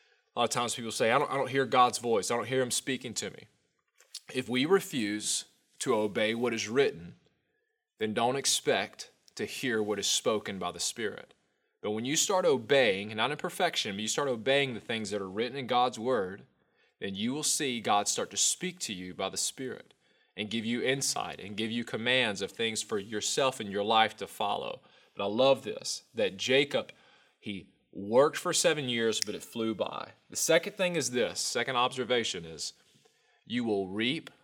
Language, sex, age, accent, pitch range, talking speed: English, male, 20-39, American, 105-135 Hz, 200 wpm